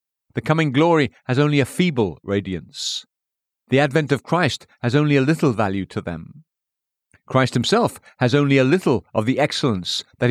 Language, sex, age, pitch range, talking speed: English, male, 50-69, 110-155 Hz, 170 wpm